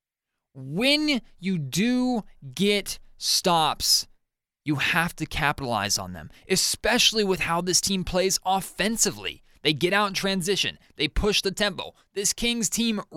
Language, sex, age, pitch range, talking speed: English, male, 20-39, 155-200 Hz, 135 wpm